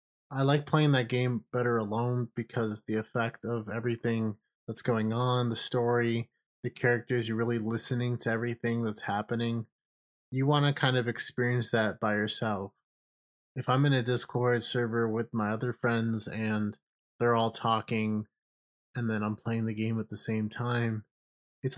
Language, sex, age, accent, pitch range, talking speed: English, male, 20-39, American, 105-125 Hz, 165 wpm